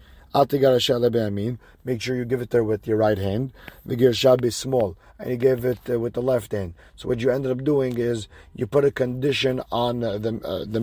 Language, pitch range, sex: English, 110-135 Hz, male